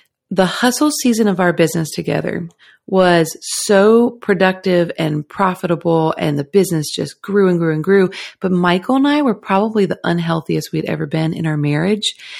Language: English